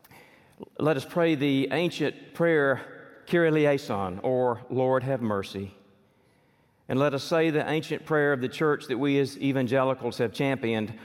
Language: English